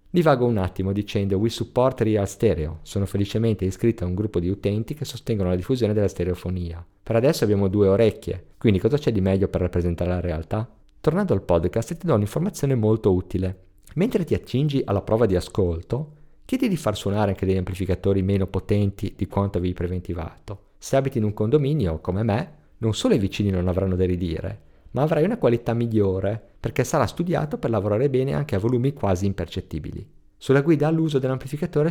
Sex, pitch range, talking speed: male, 95-125 Hz, 185 wpm